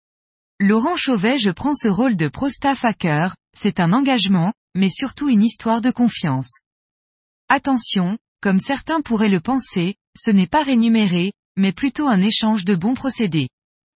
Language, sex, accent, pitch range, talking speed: French, female, French, 190-250 Hz, 150 wpm